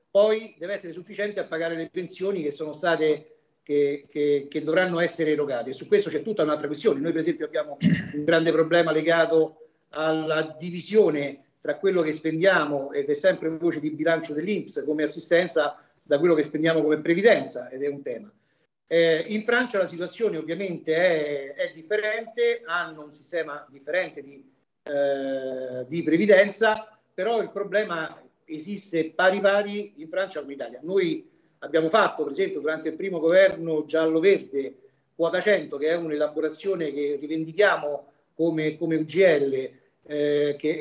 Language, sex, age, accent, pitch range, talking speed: Italian, male, 50-69, native, 150-195 Hz, 155 wpm